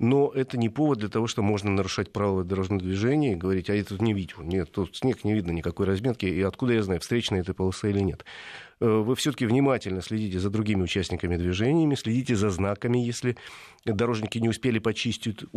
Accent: native